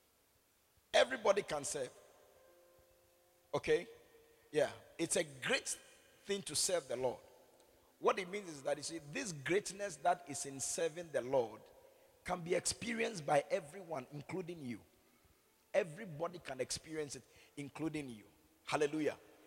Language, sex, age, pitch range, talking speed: English, male, 50-69, 140-205 Hz, 130 wpm